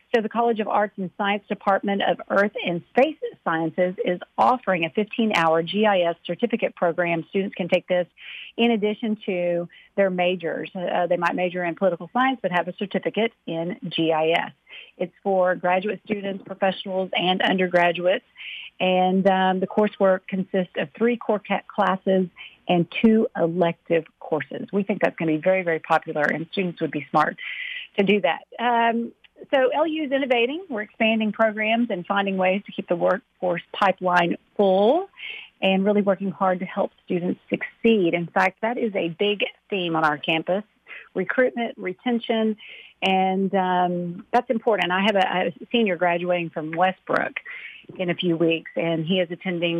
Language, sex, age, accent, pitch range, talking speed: English, female, 50-69, American, 175-220 Hz, 165 wpm